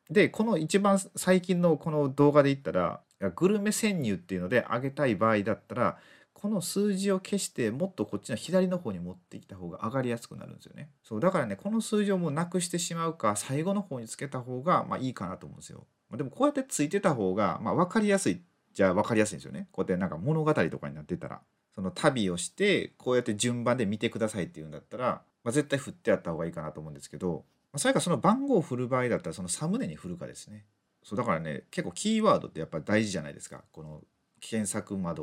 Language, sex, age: Japanese, male, 30-49